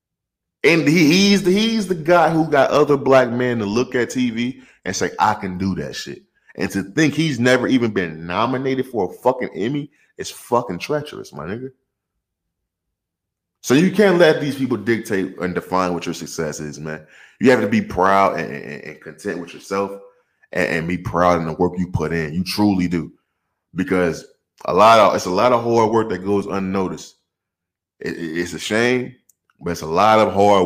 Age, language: 20-39, English